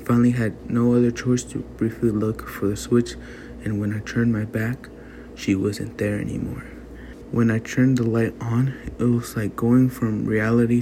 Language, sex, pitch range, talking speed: English, male, 105-120 Hz, 190 wpm